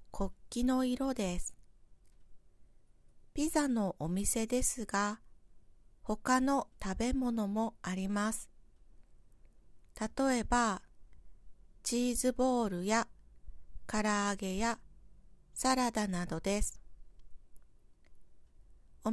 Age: 40-59